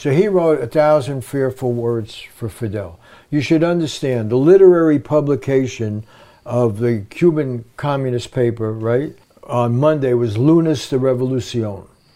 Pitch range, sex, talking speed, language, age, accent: 120-145 Hz, male, 135 wpm, English, 60-79, American